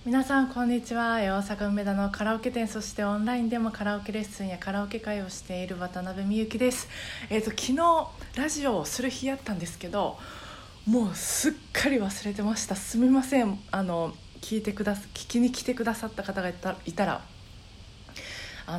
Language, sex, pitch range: Japanese, female, 175-230 Hz